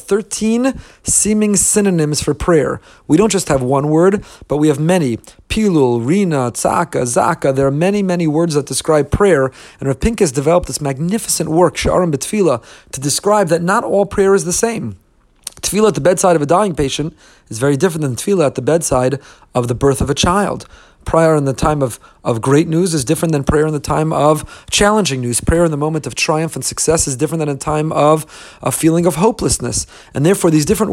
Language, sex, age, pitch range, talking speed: English, male, 40-59, 135-175 Hz, 205 wpm